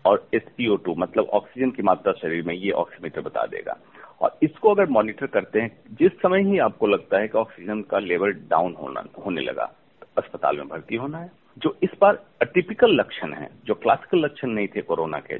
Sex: male